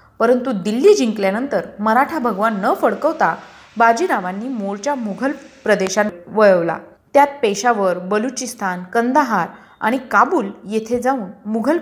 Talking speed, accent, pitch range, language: 105 wpm, native, 200-255 Hz, Marathi